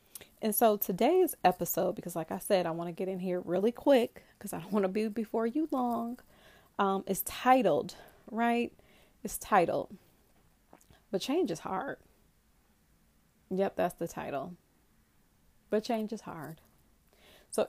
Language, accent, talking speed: English, American, 150 wpm